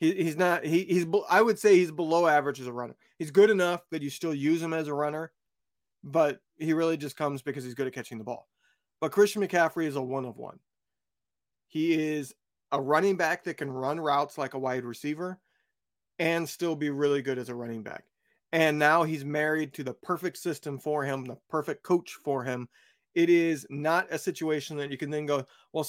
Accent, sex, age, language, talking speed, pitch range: American, male, 30-49, English, 215 wpm, 140-175 Hz